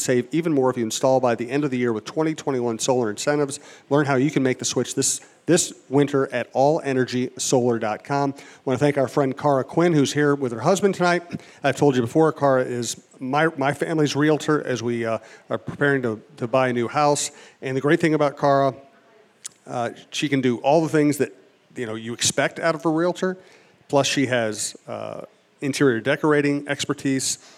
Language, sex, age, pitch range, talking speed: English, male, 40-59, 120-145 Hz, 200 wpm